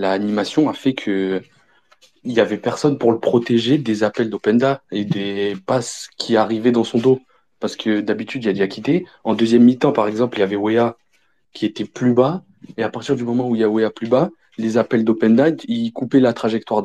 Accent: French